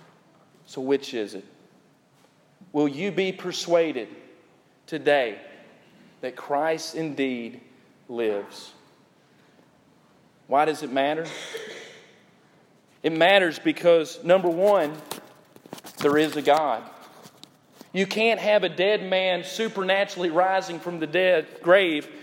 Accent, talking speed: American, 105 wpm